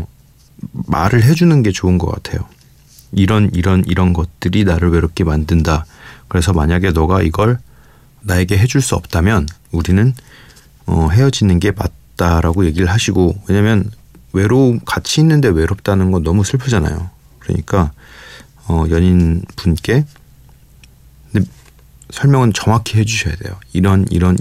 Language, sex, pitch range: Korean, male, 85-110 Hz